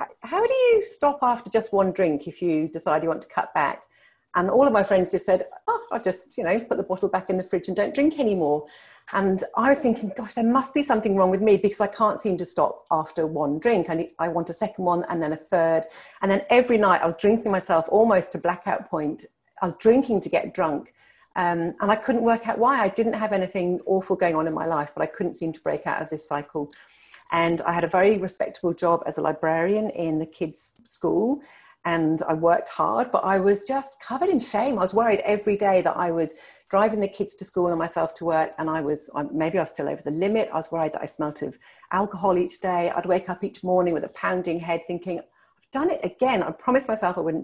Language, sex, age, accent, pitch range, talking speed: English, female, 40-59, British, 165-215 Hz, 245 wpm